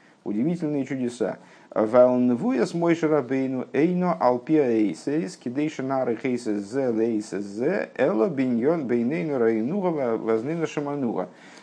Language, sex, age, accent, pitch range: Russian, male, 50-69, native, 115-160 Hz